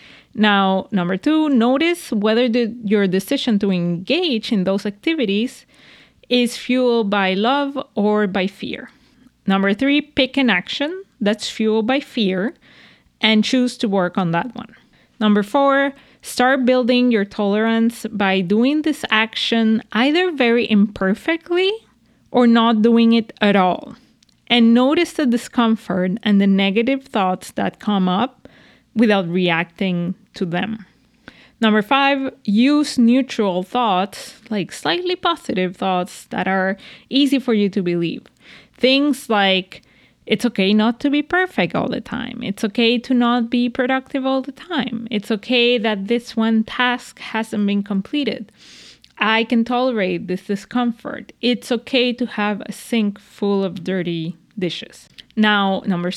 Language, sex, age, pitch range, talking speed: English, female, 20-39, 200-255 Hz, 140 wpm